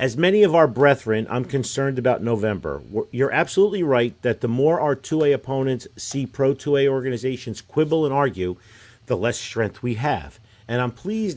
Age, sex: 50-69, male